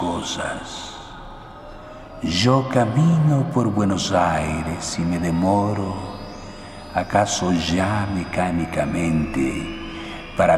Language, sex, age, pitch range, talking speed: Spanish, male, 60-79, 85-110 Hz, 70 wpm